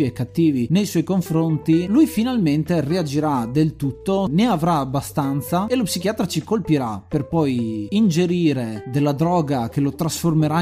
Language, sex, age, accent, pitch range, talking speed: Italian, male, 30-49, native, 135-175 Hz, 145 wpm